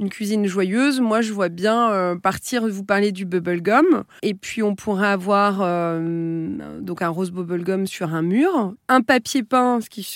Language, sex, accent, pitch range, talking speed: French, female, French, 190-240 Hz, 185 wpm